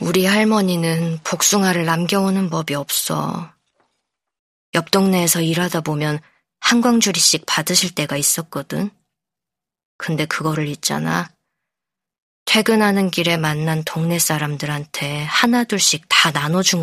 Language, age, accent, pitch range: Korean, 20-39, native, 155-185 Hz